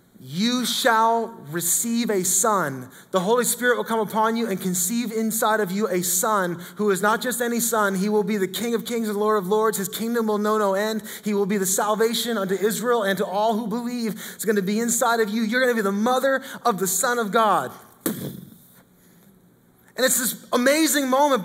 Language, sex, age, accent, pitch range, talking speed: English, male, 20-39, American, 210-245 Hz, 215 wpm